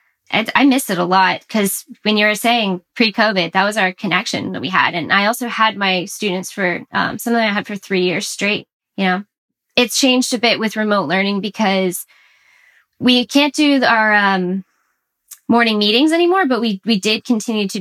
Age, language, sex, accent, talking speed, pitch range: 10-29, English, female, American, 195 wpm, 190-235 Hz